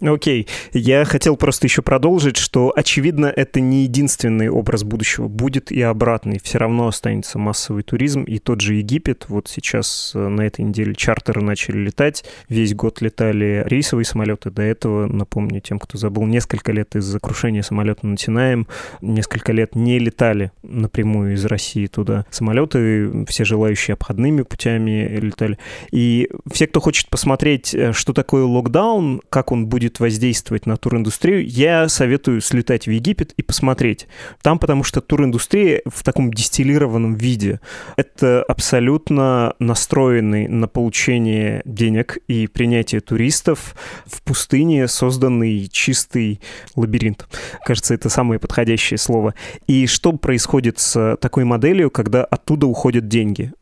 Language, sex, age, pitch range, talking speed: Russian, male, 20-39, 110-135 Hz, 140 wpm